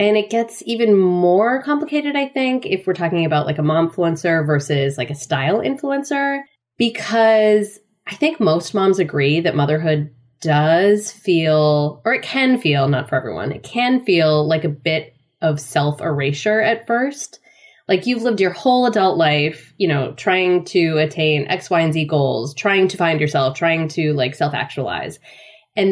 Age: 20-39